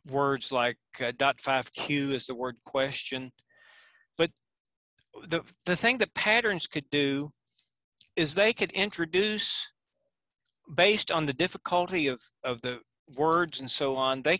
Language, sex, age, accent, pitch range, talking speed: English, male, 40-59, American, 135-175 Hz, 140 wpm